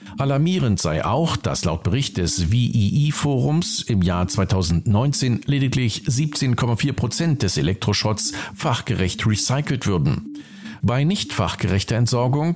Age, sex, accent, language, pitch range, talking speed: 50-69, male, German, German, 100-145 Hz, 110 wpm